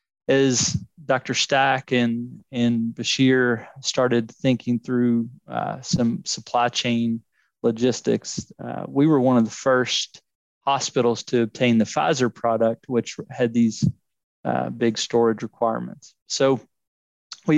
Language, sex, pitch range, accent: English, male, 115-135 Hz, American